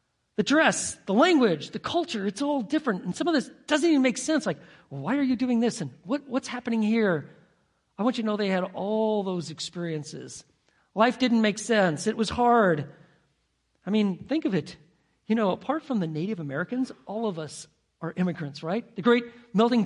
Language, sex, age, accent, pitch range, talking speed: English, male, 40-59, American, 155-230 Hz, 200 wpm